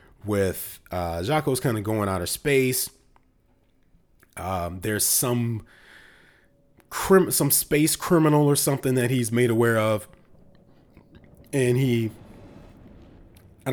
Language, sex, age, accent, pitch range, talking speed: English, male, 30-49, American, 95-130 Hz, 115 wpm